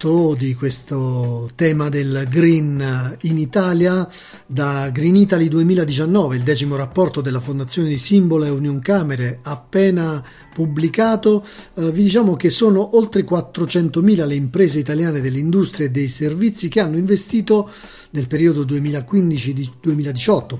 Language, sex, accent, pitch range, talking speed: Italian, male, native, 140-180 Hz, 125 wpm